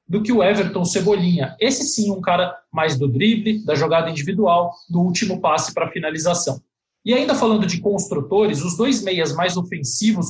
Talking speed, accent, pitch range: 175 wpm, Brazilian, 165-210 Hz